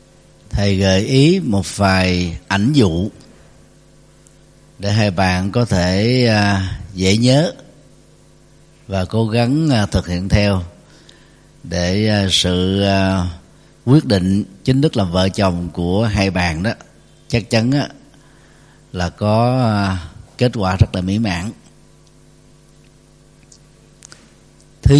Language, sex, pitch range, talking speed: Vietnamese, male, 95-125 Hz, 105 wpm